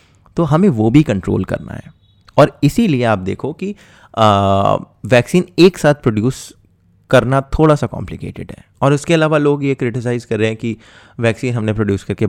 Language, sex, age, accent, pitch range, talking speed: Hindi, male, 20-39, native, 105-145 Hz, 175 wpm